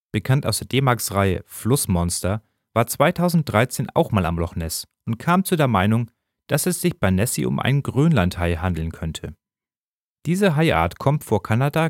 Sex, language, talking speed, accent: male, German, 170 wpm, German